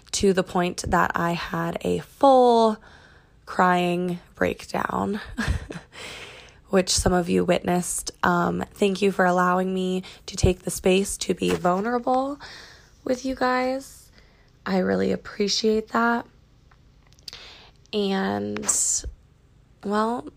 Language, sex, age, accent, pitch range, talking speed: English, female, 20-39, American, 180-230 Hz, 110 wpm